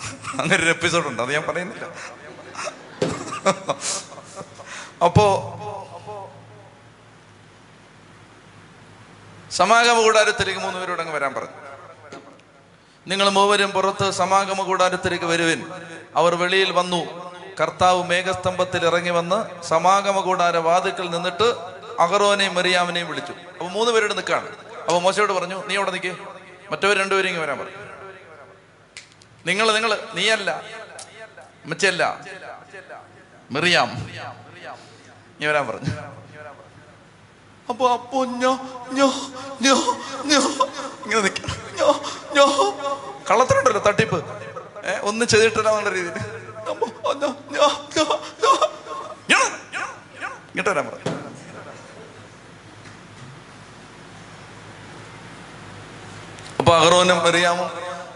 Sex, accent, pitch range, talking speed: male, native, 170-220 Hz, 55 wpm